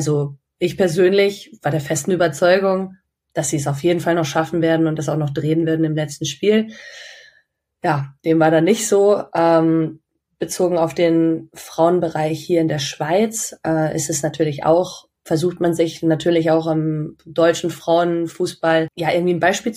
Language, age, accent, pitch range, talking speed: German, 20-39, German, 160-180 Hz, 175 wpm